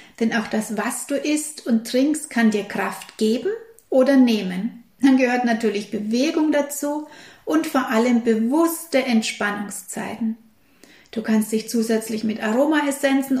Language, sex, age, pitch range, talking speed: German, female, 60-79, 220-275 Hz, 135 wpm